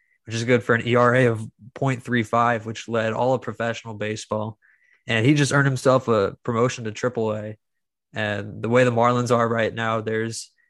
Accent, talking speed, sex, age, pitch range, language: American, 185 wpm, male, 20-39, 110-125 Hz, English